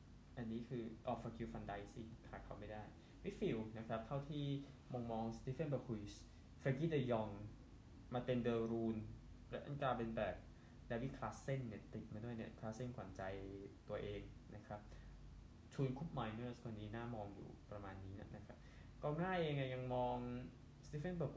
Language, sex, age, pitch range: Thai, male, 20-39, 110-130 Hz